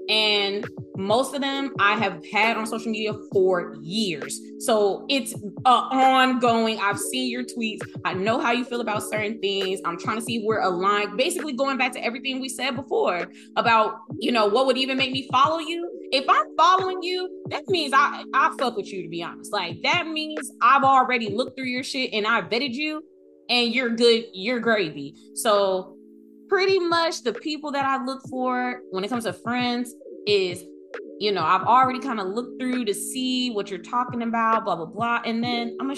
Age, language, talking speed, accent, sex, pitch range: 20-39, English, 200 wpm, American, female, 180-255 Hz